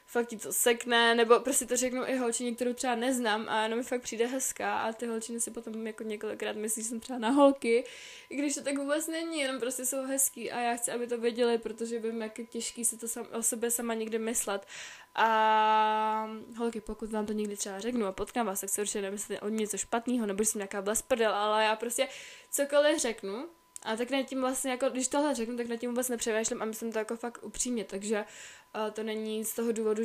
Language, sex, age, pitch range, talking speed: Czech, female, 10-29, 210-240 Hz, 230 wpm